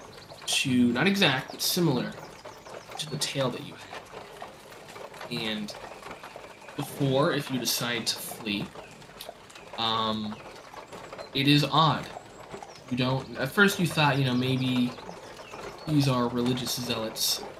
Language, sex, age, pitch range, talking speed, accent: English, male, 20-39, 120-140 Hz, 120 wpm, American